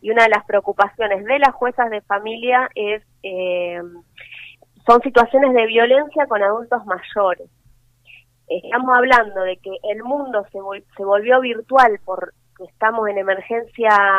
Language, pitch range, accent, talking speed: Spanish, 190-245 Hz, Argentinian, 135 wpm